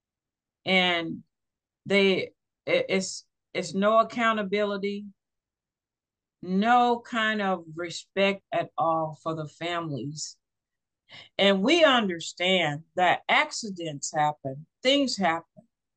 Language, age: English, 50-69